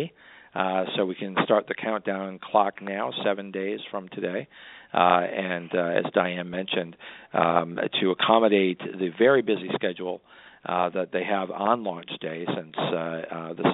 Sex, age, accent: male, 40-59, American